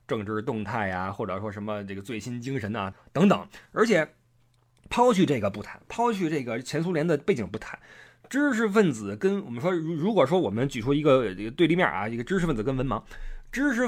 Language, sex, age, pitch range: Chinese, male, 20-39, 120-180 Hz